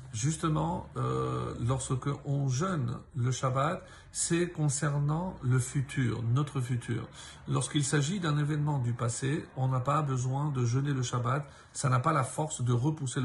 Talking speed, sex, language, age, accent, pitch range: 150 wpm, male, French, 50-69, French, 130-155 Hz